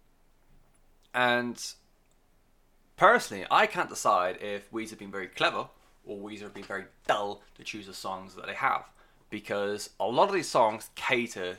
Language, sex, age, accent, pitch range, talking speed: English, male, 20-39, British, 100-120 Hz, 160 wpm